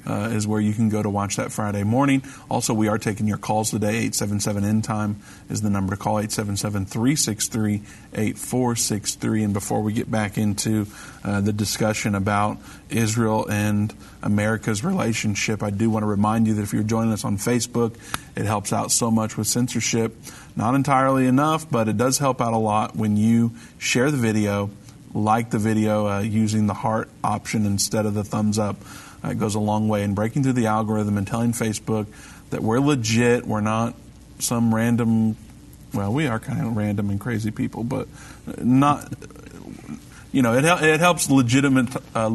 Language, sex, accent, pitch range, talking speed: English, male, American, 105-120 Hz, 175 wpm